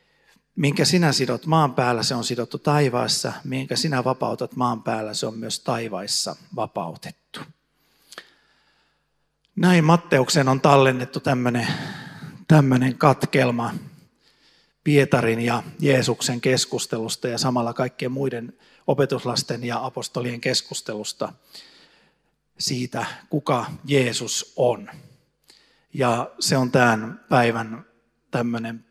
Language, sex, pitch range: Finnish, male, 120-145 Hz